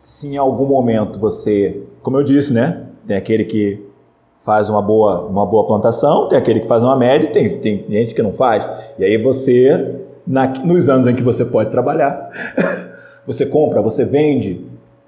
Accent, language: Brazilian, Portuguese